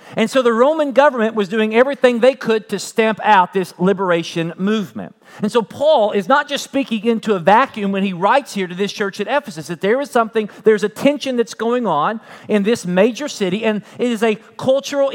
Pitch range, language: 195-245 Hz, English